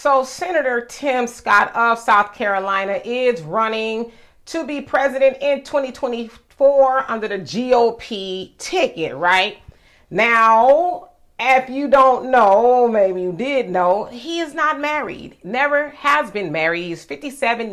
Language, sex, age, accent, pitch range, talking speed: English, female, 40-59, American, 190-280 Hz, 130 wpm